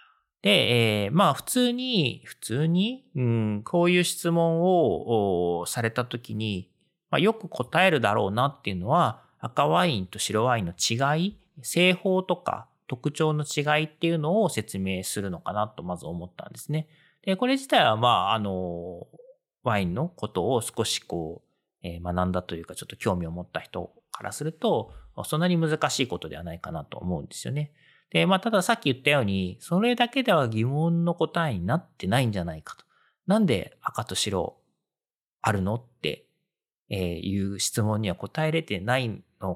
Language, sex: Japanese, male